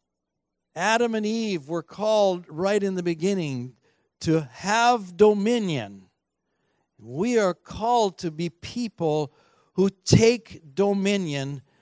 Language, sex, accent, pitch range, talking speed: English, male, American, 140-195 Hz, 105 wpm